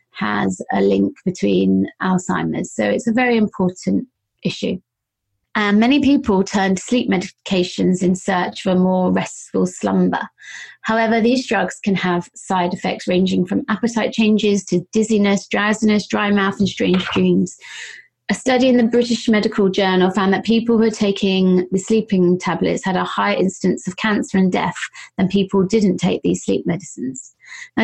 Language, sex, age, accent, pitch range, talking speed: English, female, 30-49, British, 180-215 Hz, 160 wpm